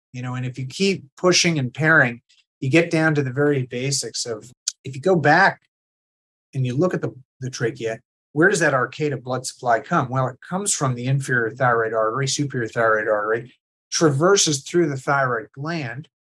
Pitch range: 120-150 Hz